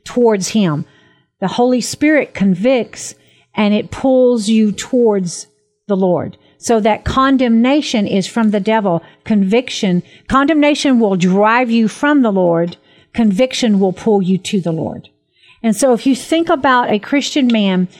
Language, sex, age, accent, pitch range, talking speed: English, female, 50-69, American, 210-265 Hz, 145 wpm